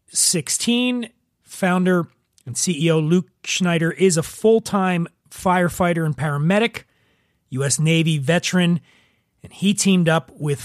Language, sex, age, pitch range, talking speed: English, male, 30-49, 150-185 Hz, 115 wpm